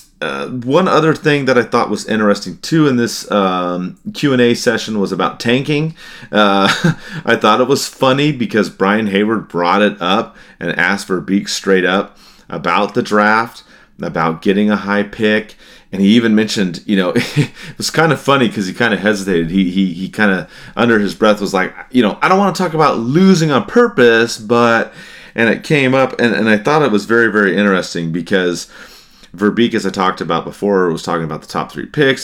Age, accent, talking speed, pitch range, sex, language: 30-49, American, 205 wpm, 95-120 Hz, male, English